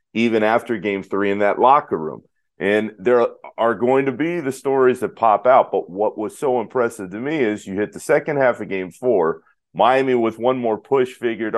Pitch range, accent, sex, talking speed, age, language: 100-125 Hz, American, male, 210 wpm, 40-59, English